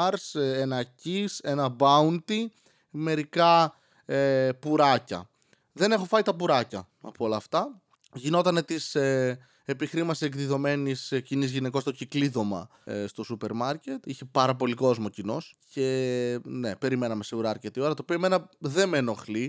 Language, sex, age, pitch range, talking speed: Greek, male, 20-39, 130-175 Hz, 140 wpm